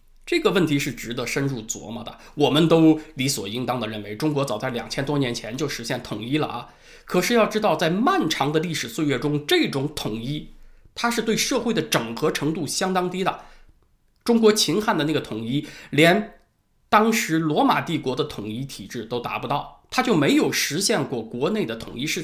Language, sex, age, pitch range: Chinese, male, 20-39, 130-210 Hz